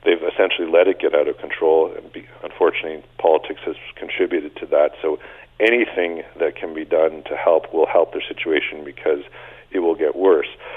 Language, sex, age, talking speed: English, male, 50-69, 180 wpm